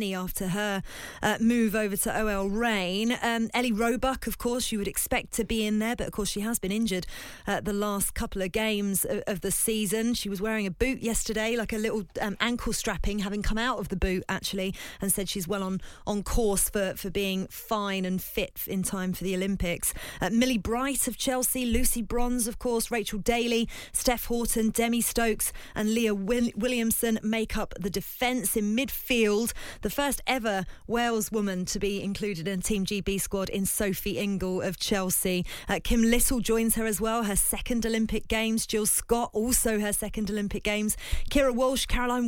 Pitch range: 195-235 Hz